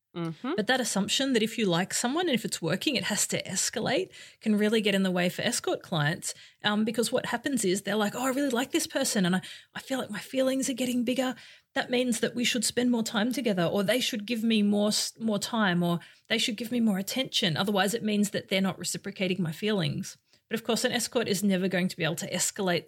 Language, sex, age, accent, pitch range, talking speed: English, female, 30-49, Australian, 180-230 Hz, 245 wpm